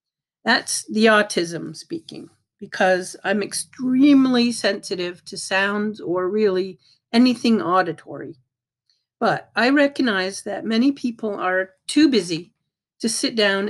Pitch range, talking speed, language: 190-240 Hz, 115 wpm, English